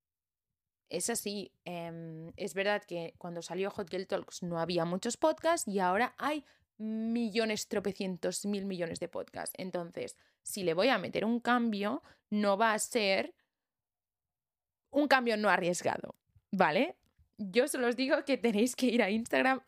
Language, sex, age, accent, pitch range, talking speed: Spanish, female, 20-39, Spanish, 180-240 Hz, 155 wpm